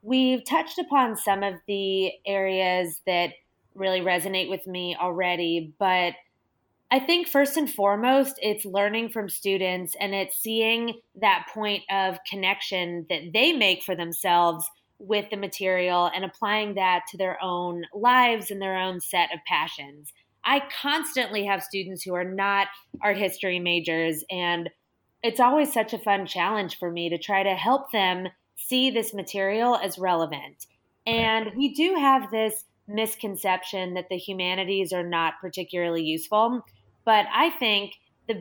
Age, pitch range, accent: 20-39, 180-230 Hz, American